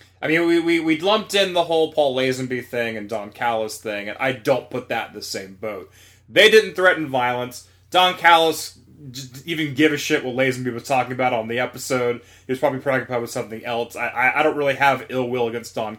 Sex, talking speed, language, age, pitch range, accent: male, 225 wpm, English, 20-39, 110-145 Hz, American